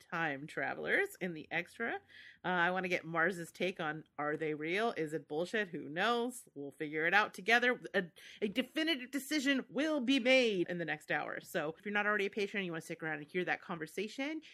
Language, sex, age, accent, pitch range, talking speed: English, female, 30-49, American, 170-255 Hz, 225 wpm